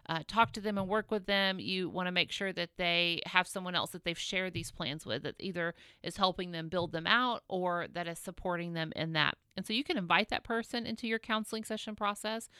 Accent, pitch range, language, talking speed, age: American, 180-215 Hz, English, 245 wpm, 40-59